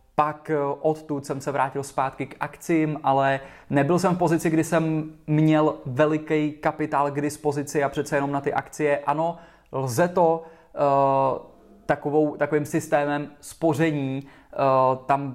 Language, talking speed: Czech, 130 wpm